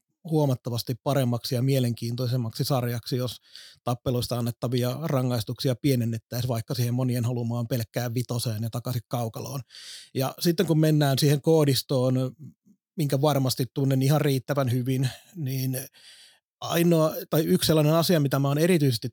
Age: 30-49